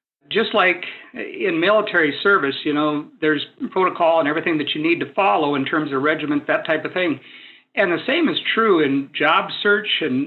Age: 50-69